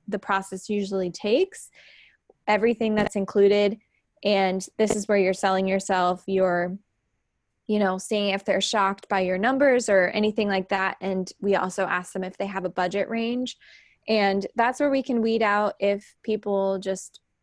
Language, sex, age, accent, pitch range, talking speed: English, female, 20-39, American, 180-210 Hz, 170 wpm